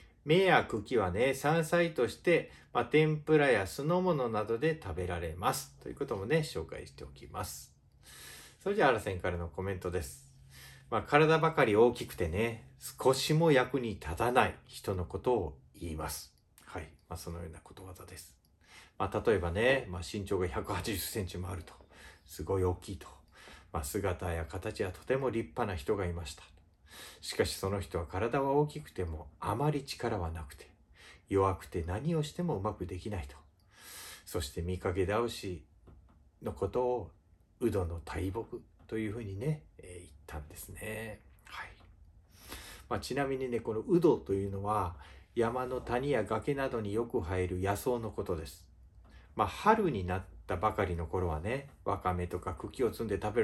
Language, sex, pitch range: Japanese, male, 85-115 Hz